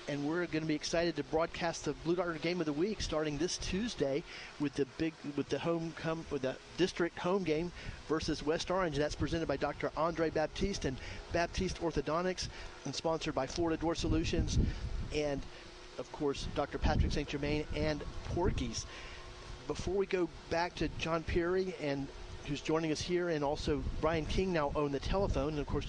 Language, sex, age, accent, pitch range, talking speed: English, male, 40-59, American, 140-165 Hz, 190 wpm